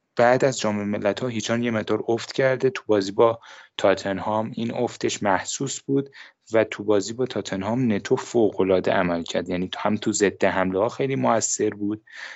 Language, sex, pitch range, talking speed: Persian, male, 95-120 Hz, 185 wpm